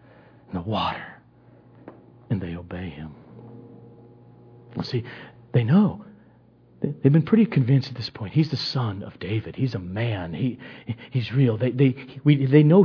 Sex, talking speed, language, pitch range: male, 150 wpm, English, 120-165 Hz